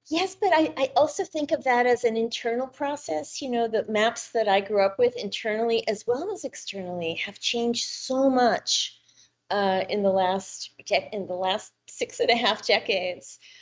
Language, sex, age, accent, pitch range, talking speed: English, female, 40-59, American, 210-285 Hz, 185 wpm